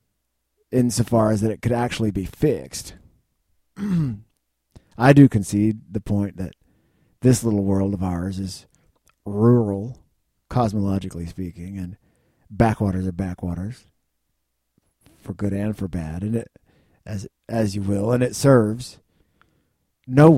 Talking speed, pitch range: 125 wpm, 95-120 Hz